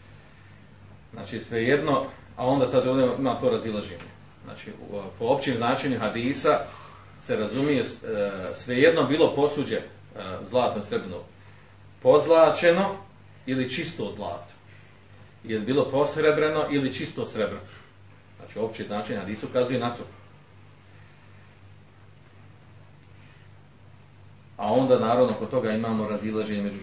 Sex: male